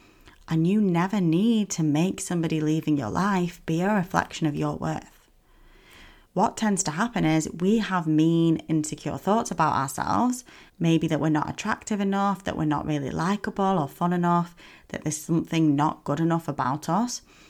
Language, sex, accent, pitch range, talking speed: English, female, British, 155-210 Hz, 170 wpm